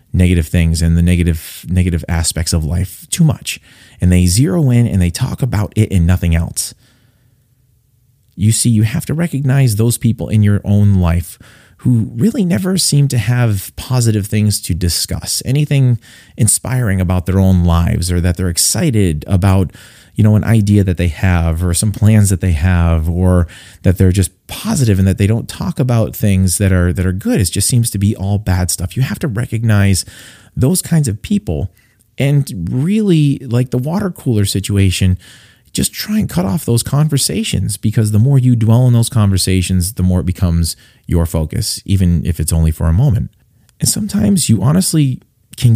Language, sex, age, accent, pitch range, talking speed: English, male, 30-49, American, 90-125 Hz, 185 wpm